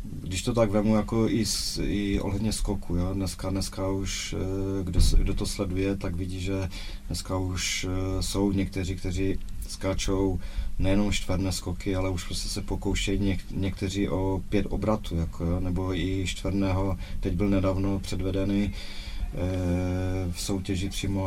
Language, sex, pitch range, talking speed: Czech, male, 90-100 Hz, 145 wpm